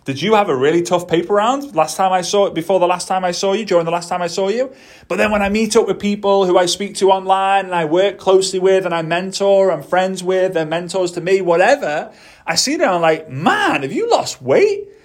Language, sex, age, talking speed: English, male, 30-49, 265 wpm